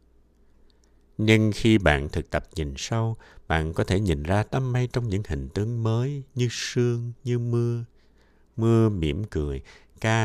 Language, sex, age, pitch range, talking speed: Vietnamese, male, 60-79, 75-115 Hz, 160 wpm